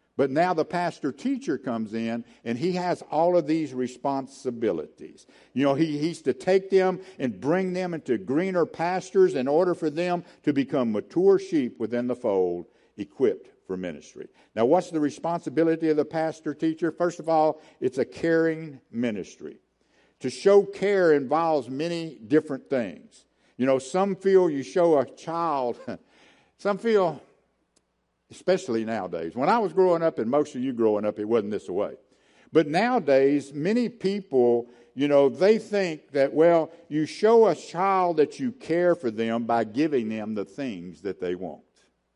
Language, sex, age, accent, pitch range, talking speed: English, male, 60-79, American, 135-185 Hz, 160 wpm